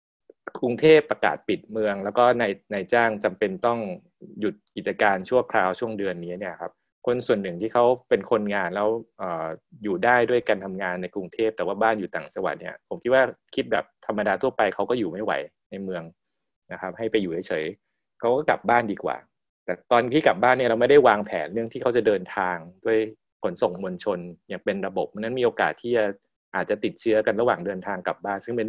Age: 20-39